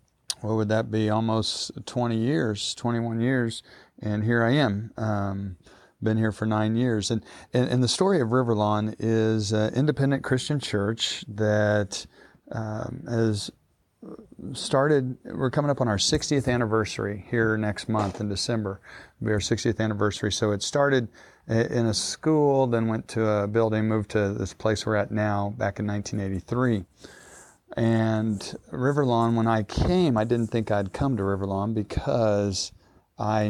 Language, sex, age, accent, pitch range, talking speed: English, male, 40-59, American, 105-120 Hz, 155 wpm